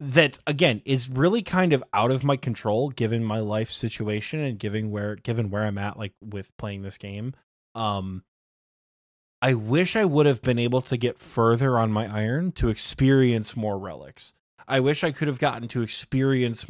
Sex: male